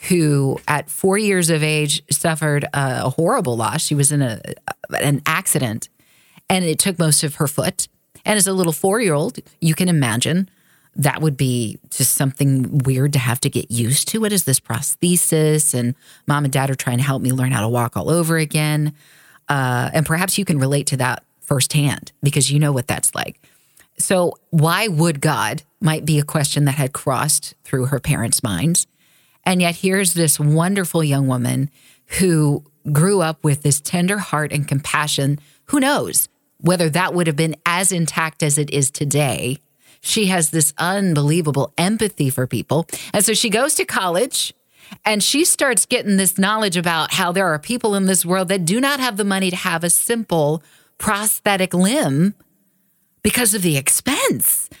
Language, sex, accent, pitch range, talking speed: English, female, American, 140-185 Hz, 180 wpm